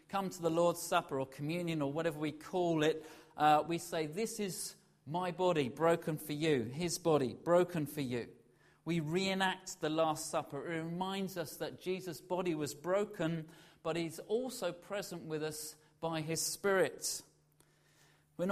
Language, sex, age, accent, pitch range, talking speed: English, male, 40-59, British, 155-185 Hz, 160 wpm